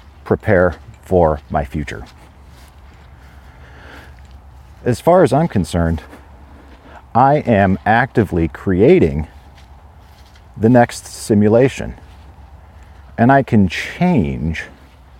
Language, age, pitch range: English, 50-69, 75-95 Hz